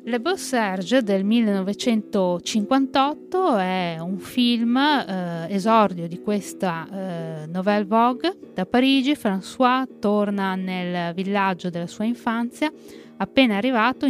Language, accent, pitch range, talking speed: Italian, native, 185-240 Hz, 110 wpm